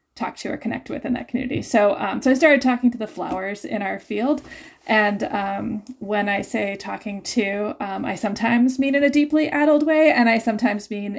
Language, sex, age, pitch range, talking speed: English, female, 20-39, 210-285 Hz, 210 wpm